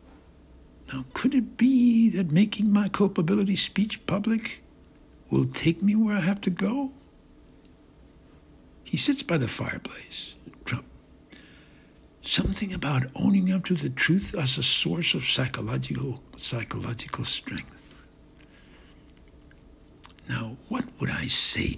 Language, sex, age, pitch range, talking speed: English, male, 60-79, 125-200 Hz, 120 wpm